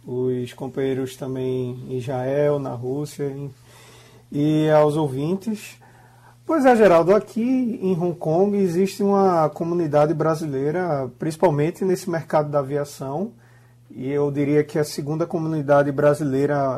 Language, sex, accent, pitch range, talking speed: Portuguese, male, Brazilian, 135-170 Hz, 120 wpm